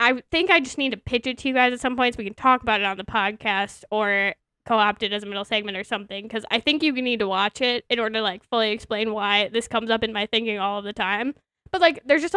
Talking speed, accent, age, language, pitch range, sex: 290 wpm, American, 10-29, English, 205-250 Hz, female